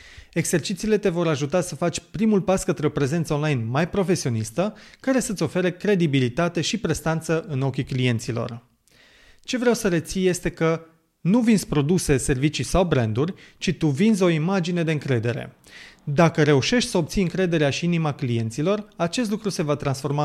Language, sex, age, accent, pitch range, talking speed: Romanian, male, 30-49, native, 140-185 Hz, 165 wpm